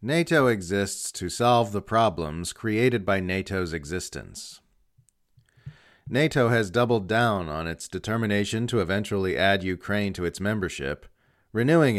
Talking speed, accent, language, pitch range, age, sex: 125 wpm, American, English, 90-120 Hz, 40-59, male